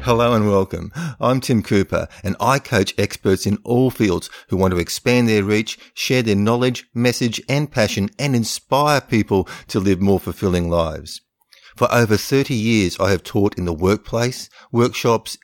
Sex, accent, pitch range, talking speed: male, Australian, 85-115 Hz, 170 wpm